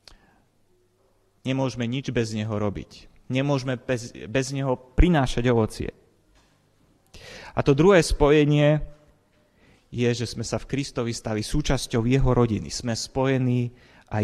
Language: Slovak